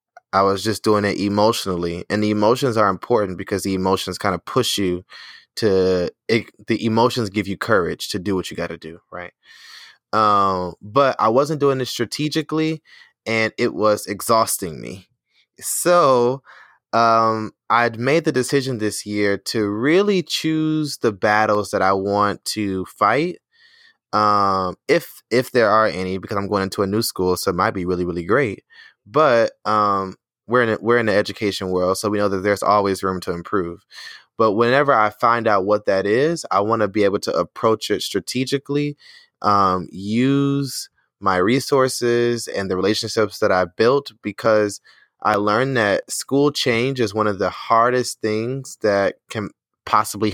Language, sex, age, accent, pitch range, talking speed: English, male, 20-39, American, 100-125 Hz, 170 wpm